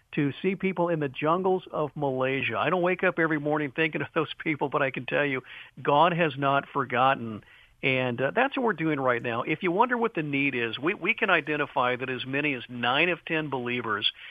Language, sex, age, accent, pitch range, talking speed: English, male, 50-69, American, 135-170 Hz, 225 wpm